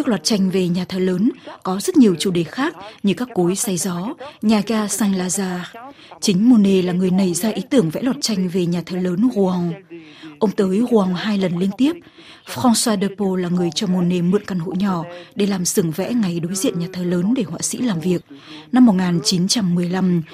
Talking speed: 210 wpm